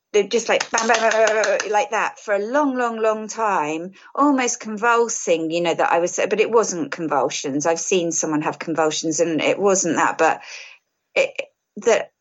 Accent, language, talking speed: British, English, 155 wpm